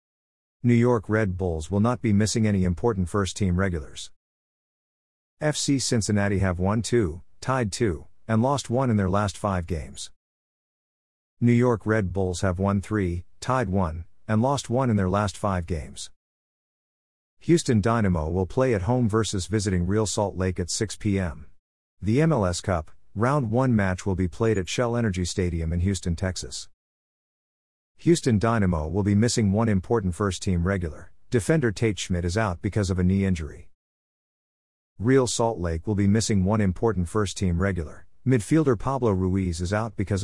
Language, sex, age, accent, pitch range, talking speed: English, male, 50-69, American, 90-115 Hz, 165 wpm